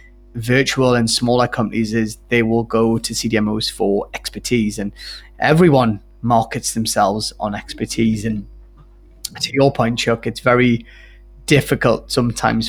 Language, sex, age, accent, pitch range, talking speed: English, male, 20-39, British, 110-125 Hz, 130 wpm